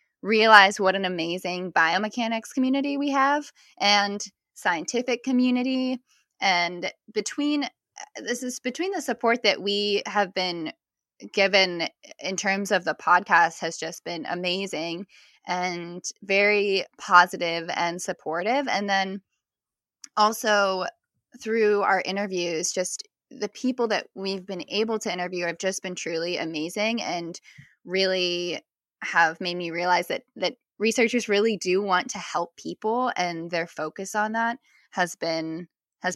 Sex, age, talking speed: female, 10-29, 135 wpm